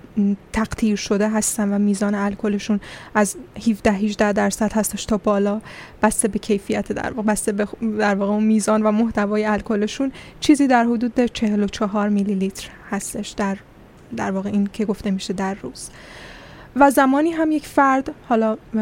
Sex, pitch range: female, 210-235 Hz